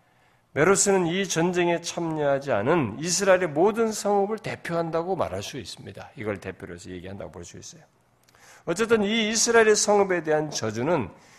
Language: Korean